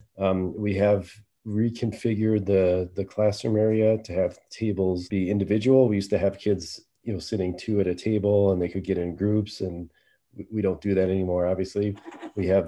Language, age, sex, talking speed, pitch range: English, 30-49, male, 190 wpm, 90-105 Hz